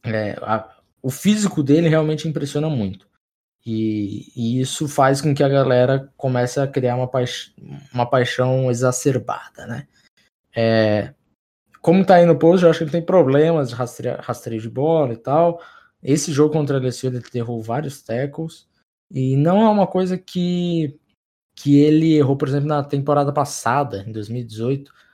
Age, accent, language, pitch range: 20-39, Brazilian, Portuguese, 120-155 Hz